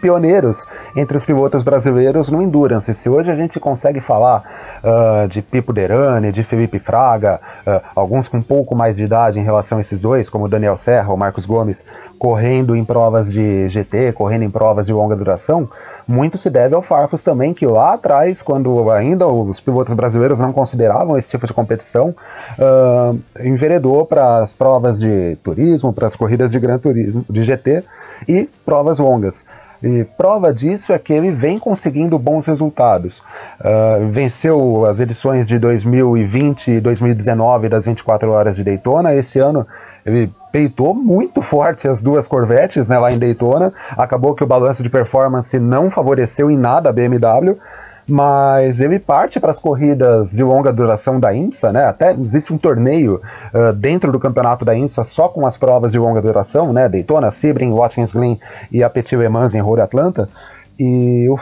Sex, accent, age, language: male, Brazilian, 30-49, Portuguese